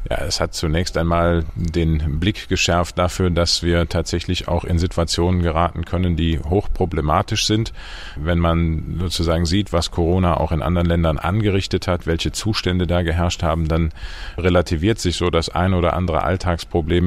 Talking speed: 160 wpm